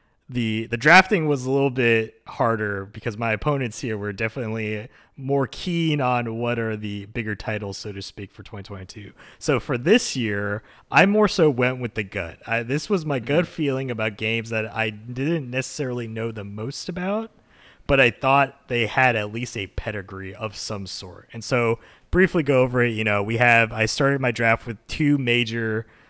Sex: male